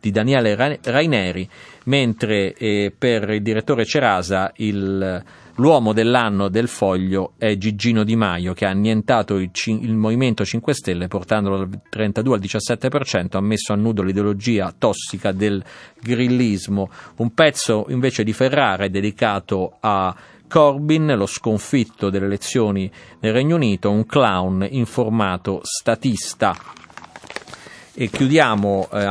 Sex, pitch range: male, 95-115 Hz